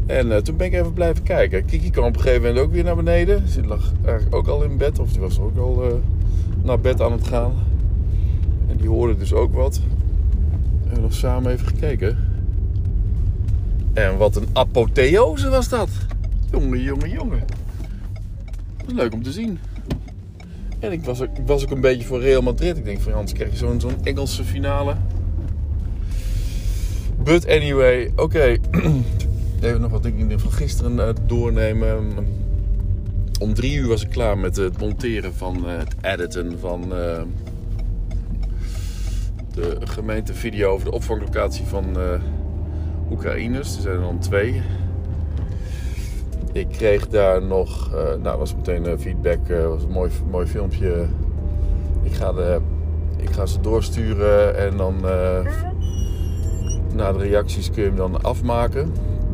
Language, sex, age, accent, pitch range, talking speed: Dutch, male, 50-69, Dutch, 85-100 Hz, 160 wpm